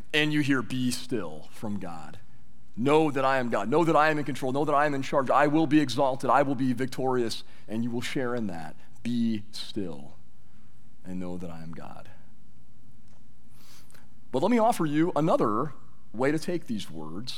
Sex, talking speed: male, 195 wpm